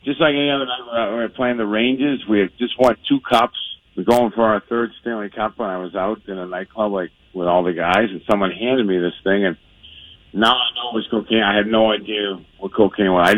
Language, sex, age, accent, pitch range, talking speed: English, male, 50-69, American, 100-120 Hz, 260 wpm